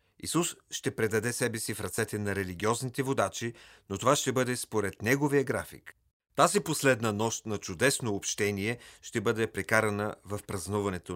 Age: 40-59